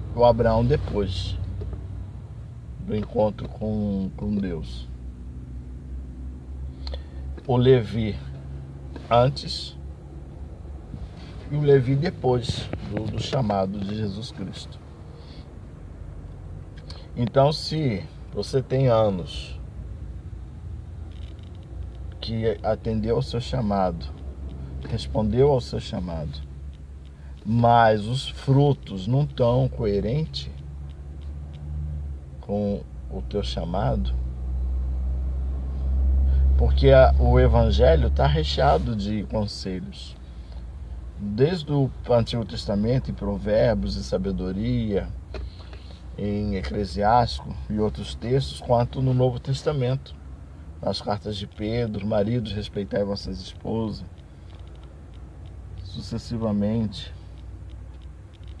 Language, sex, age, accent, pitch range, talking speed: Portuguese, male, 50-69, Brazilian, 70-110 Hz, 80 wpm